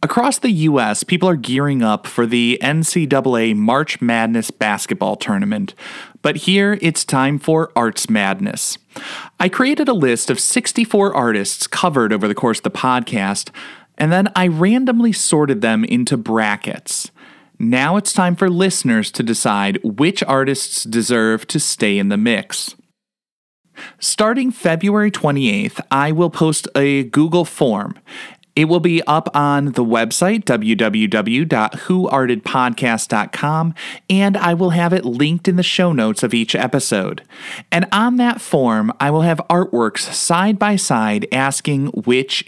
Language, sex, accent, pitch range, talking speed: English, male, American, 125-185 Hz, 140 wpm